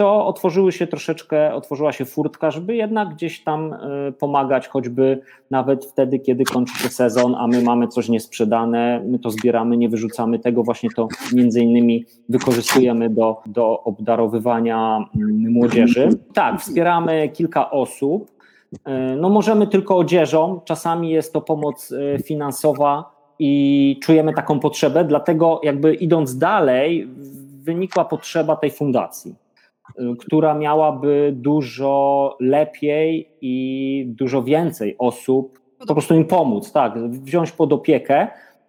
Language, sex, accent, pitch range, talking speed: Polish, male, native, 130-160 Hz, 125 wpm